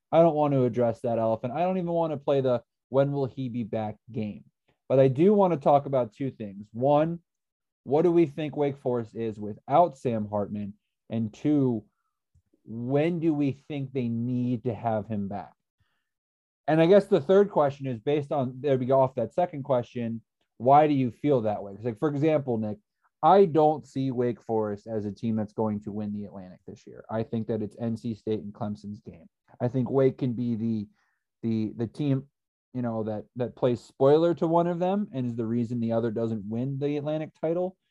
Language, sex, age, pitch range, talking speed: English, male, 30-49, 115-150 Hz, 215 wpm